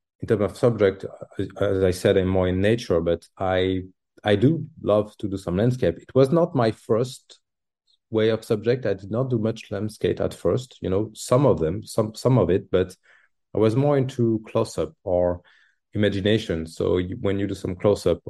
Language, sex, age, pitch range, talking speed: English, male, 30-49, 95-120 Hz, 200 wpm